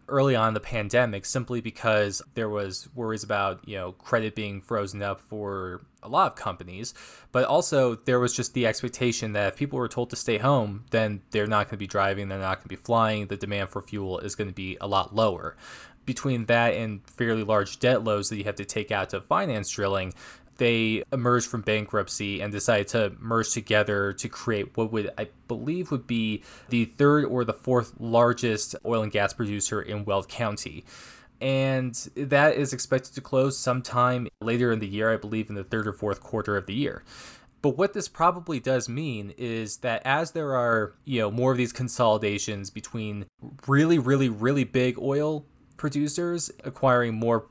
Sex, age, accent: male, 20-39, American